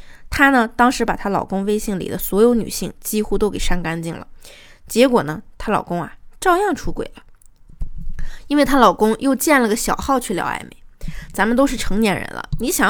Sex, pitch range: female, 185-240 Hz